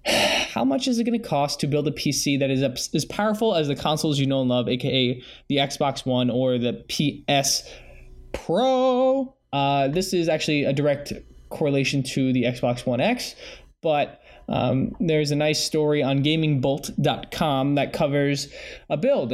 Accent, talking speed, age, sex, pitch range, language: American, 170 wpm, 20-39, male, 130-165 Hz, English